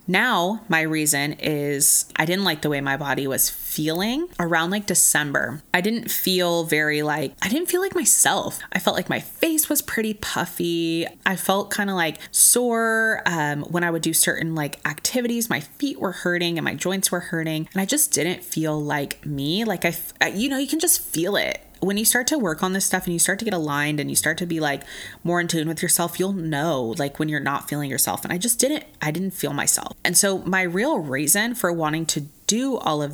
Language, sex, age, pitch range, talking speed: English, female, 20-39, 155-200 Hz, 225 wpm